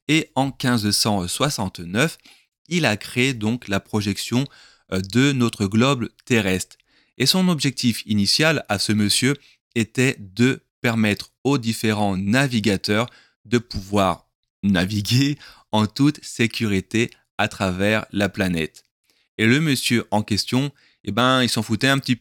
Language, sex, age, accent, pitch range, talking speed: French, male, 20-39, French, 100-125 Hz, 125 wpm